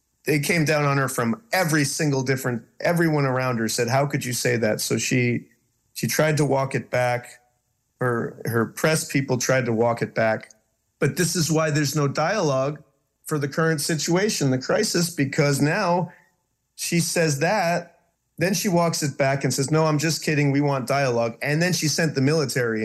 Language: English